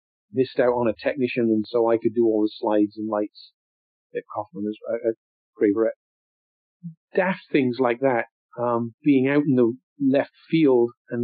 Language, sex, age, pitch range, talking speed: English, male, 50-69, 115-135 Hz, 175 wpm